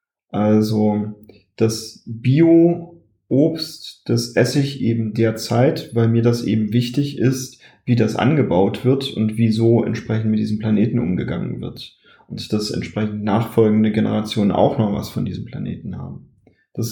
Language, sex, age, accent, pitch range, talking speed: German, male, 30-49, German, 115-130 Hz, 140 wpm